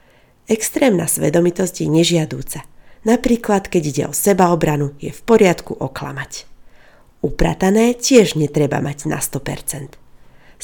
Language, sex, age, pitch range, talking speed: Slovak, female, 30-49, 145-195 Hz, 105 wpm